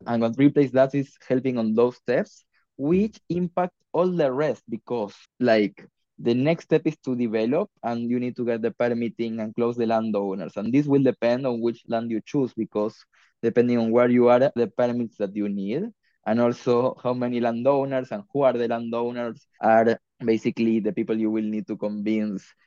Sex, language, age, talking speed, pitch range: male, English, 20-39, 190 wpm, 110-130 Hz